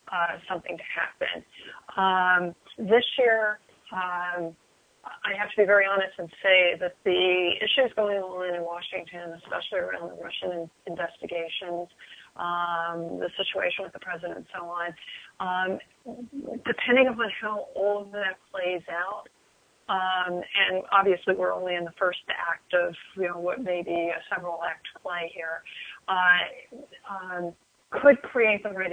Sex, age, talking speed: female, 30-49, 145 wpm